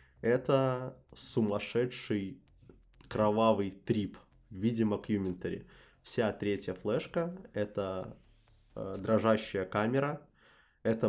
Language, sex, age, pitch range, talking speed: Russian, male, 20-39, 105-125 Hz, 75 wpm